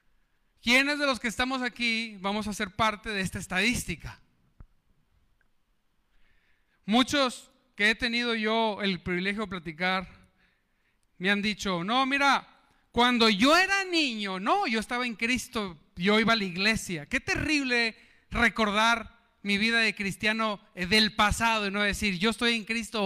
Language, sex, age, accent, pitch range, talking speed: Spanish, male, 40-59, Mexican, 205-265 Hz, 150 wpm